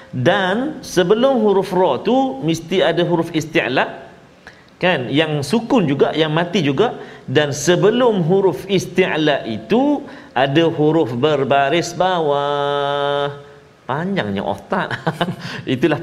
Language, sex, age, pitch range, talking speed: Malayalam, male, 40-59, 135-210 Hz, 105 wpm